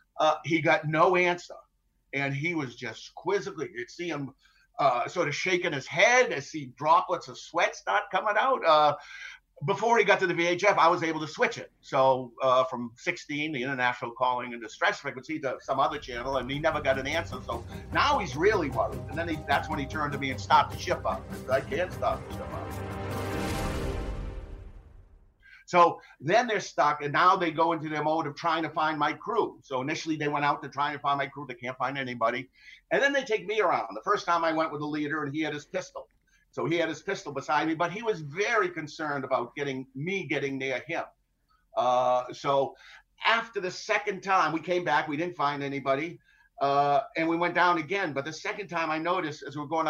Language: English